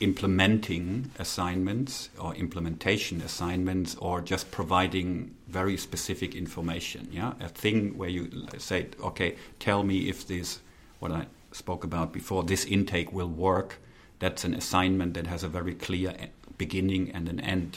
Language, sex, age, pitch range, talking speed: English, male, 50-69, 85-95 Hz, 145 wpm